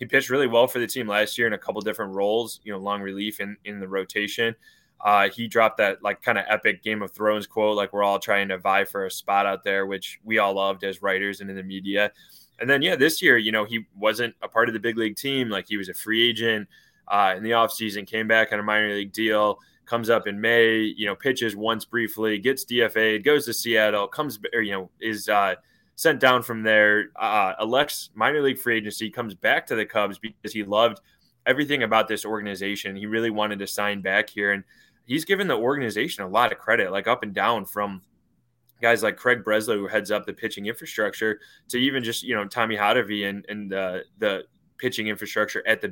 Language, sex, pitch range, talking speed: English, male, 100-115 Hz, 230 wpm